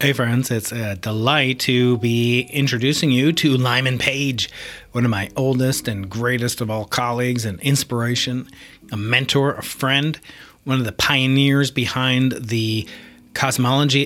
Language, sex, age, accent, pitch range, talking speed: English, male, 30-49, American, 120-145 Hz, 145 wpm